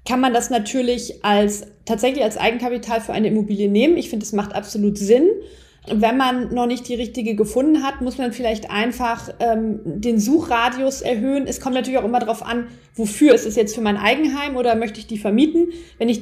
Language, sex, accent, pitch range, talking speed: German, female, German, 225-250 Hz, 205 wpm